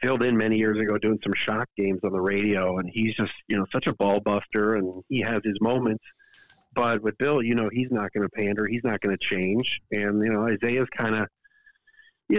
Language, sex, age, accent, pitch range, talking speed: English, male, 50-69, American, 110-150 Hz, 230 wpm